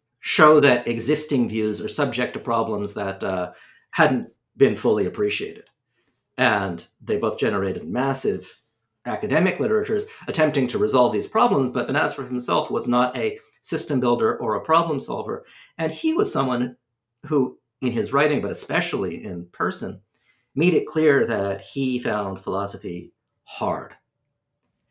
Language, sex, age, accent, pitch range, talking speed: English, male, 50-69, American, 110-150 Hz, 140 wpm